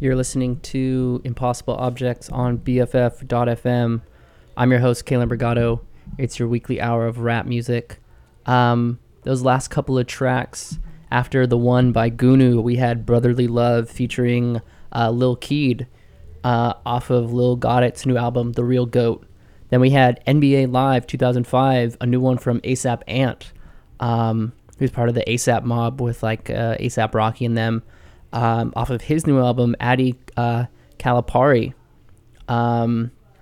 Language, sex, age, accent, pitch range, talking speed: English, male, 20-39, American, 115-130 Hz, 155 wpm